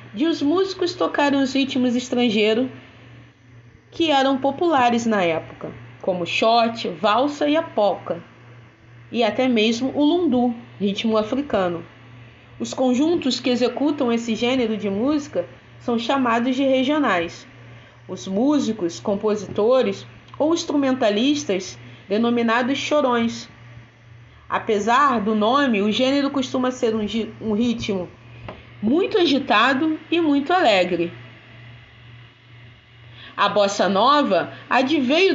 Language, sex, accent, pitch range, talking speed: Portuguese, female, Brazilian, 185-290 Hz, 110 wpm